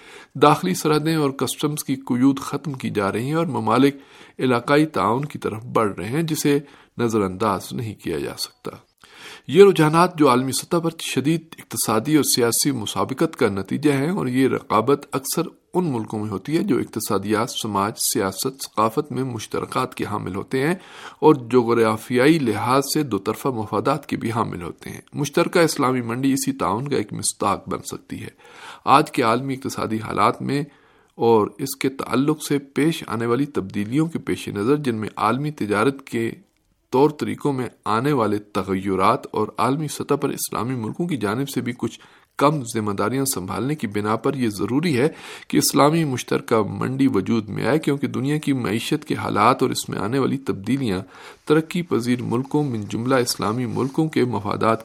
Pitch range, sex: 110-150 Hz, male